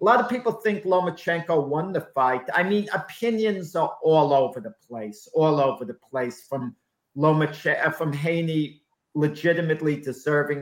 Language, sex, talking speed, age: English, male, 155 wpm, 50-69